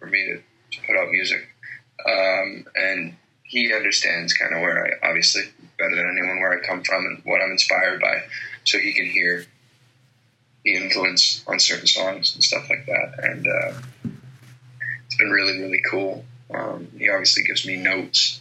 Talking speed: 175 wpm